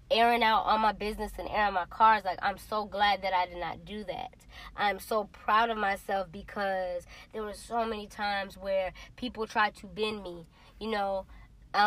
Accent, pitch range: American, 200-235 Hz